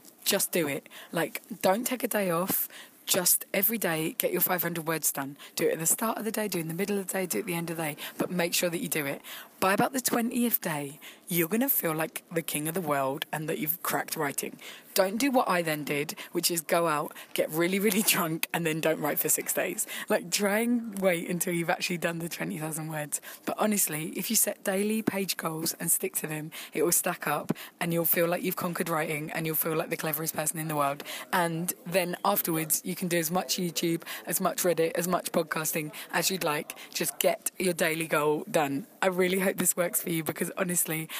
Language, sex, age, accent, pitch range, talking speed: English, female, 20-39, British, 160-190 Hz, 240 wpm